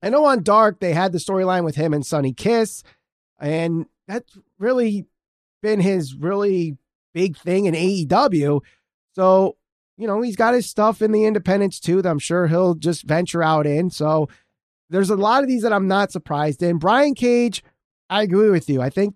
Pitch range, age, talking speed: 160-200 Hz, 30-49, 190 wpm